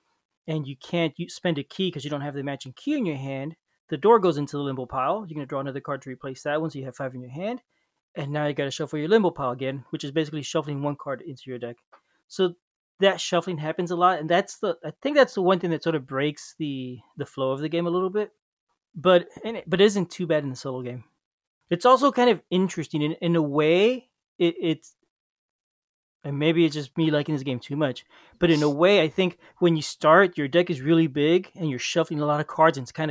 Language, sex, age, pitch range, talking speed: English, male, 20-39, 140-170 Hz, 255 wpm